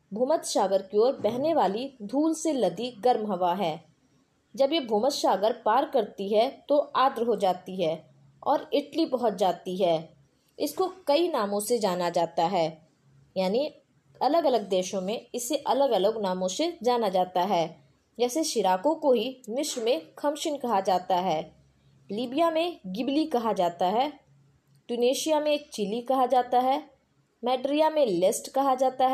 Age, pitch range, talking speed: 20-39, 185-280 Hz, 155 wpm